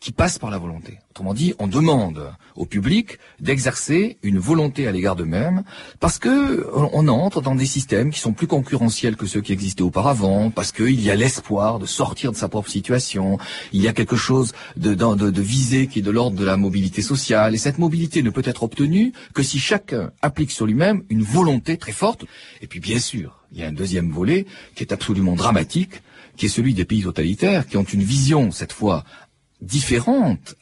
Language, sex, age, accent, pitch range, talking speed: French, male, 40-59, French, 100-150 Hz, 210 wpm